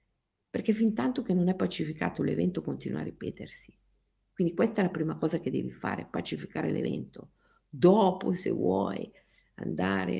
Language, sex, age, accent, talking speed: Italian, female, 50-69, native, 155 wpm